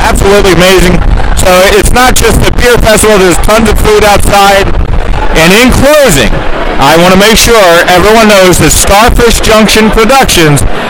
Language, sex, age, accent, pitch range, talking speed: English, male, 40-59, American, 185-225 Hz, 155 wpm